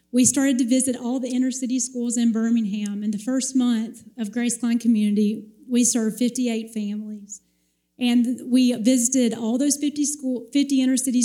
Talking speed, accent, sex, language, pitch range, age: 165 wpm, American, female, English, 220-255 Hz, 30-49